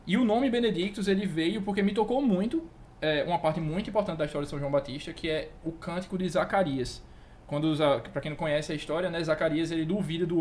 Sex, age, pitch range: male, 20-39, 145-185 Hz